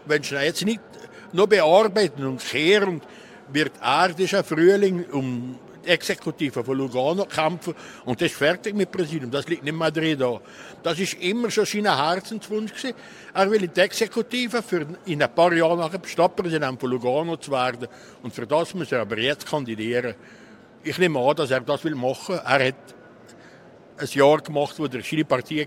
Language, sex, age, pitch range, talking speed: German, male, 60-79, 140-200 Hz, 180 wpm